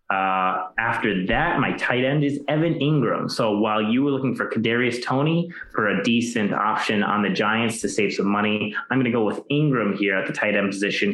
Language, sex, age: English, male, 20-39